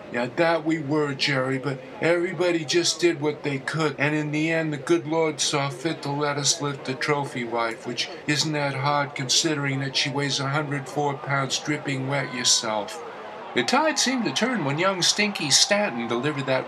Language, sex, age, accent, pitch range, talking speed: English, male, 50-69, American, 140-165 Hz, 190 wpm